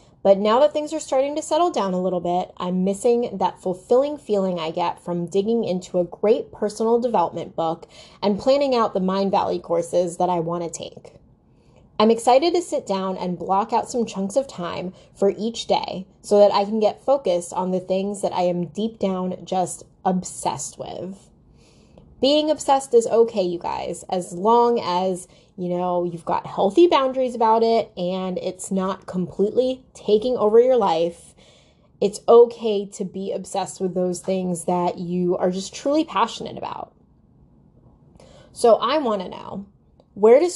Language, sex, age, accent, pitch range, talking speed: English, female, 20-39, American, 180-225 Hz, 175 wpm